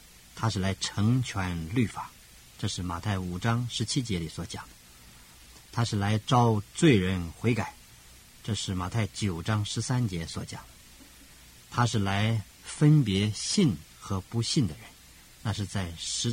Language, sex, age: Chinese, male, 50-69